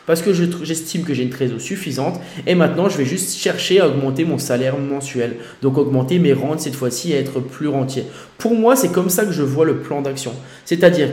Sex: male